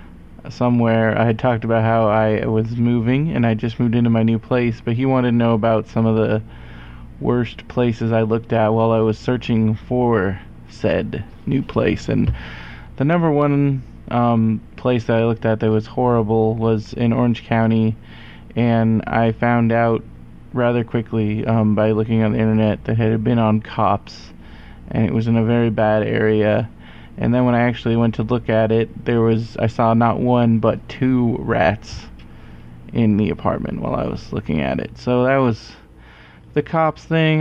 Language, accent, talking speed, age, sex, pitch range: English, American, 185 wpm, 20-39, male, 110-120 Hz